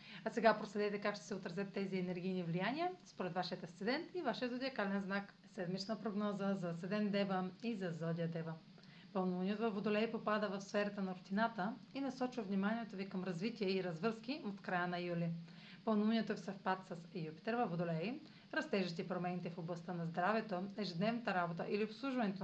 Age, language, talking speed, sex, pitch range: 40-59, Bulgarian, 170 wpm, female, 180-220 Hz